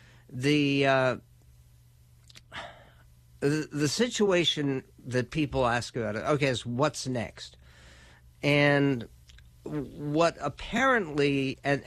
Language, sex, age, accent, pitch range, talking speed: English, male, 60-79, American, 115-145 Hz, 90 wpm